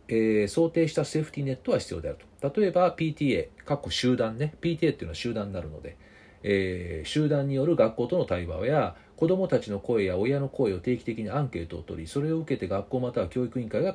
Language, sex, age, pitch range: Japanese, male, 40-59, 90-150 Hz